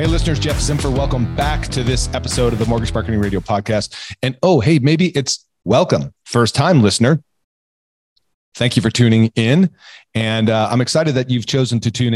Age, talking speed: 40-59, 190 wpm